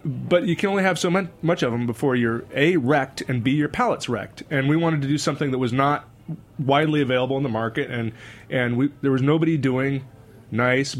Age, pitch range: 30-49, 120-145 Hz